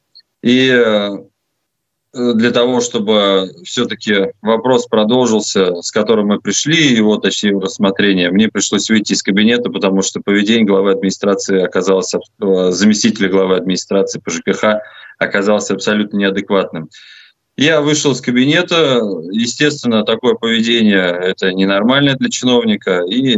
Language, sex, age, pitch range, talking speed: Russian, male, 20-39, 95-120 Hz, 115 wpm